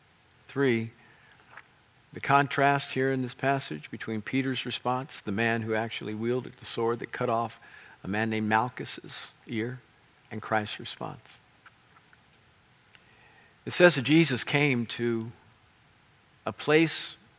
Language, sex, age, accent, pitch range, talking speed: English, male, 50-69, American, 110-130 Hz, 125 wpm